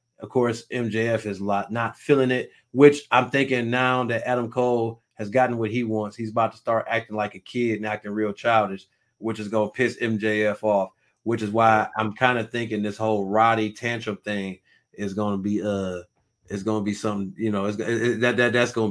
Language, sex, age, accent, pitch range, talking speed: English, male, 30-49, American, 100-120 Hz, 215 wpm